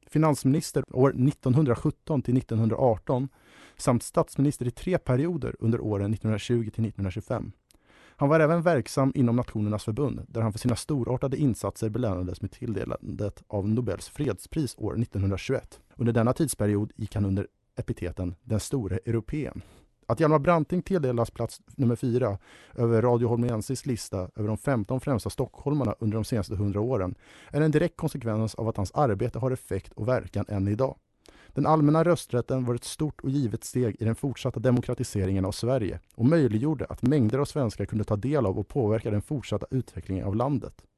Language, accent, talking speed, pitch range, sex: Swedish, Norwegian, 160 wpm, 105-135 Hz, male